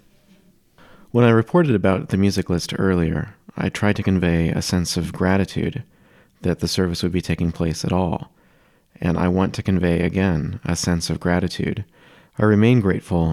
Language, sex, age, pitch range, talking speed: English, male, 30-49, 85-95 Hz, 170 wpm